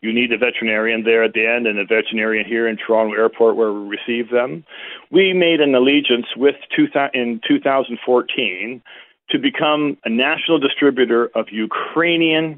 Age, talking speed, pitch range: 40-59, 155 wpm, 120-175 Hz